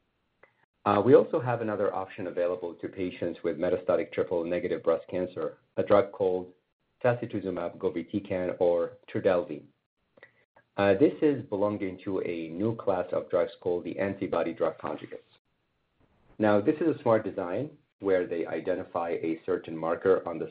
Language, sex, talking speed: English, male, 150 wpm